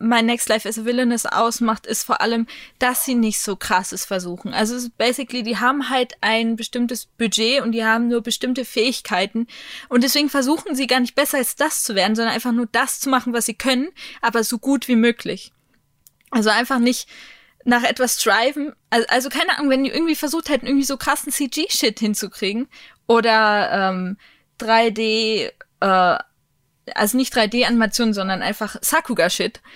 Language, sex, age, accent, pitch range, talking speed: German, female, 20-39, German, 215-260 Hz, 170 wpm